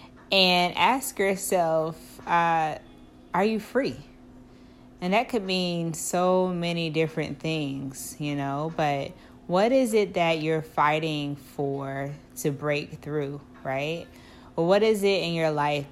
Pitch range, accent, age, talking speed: 140-175 Hz, American, 20-39, 135 wpm